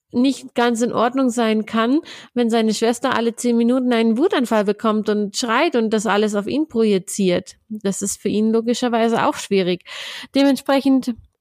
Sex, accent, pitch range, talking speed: female, German, 220-265 Hz, 165 wpm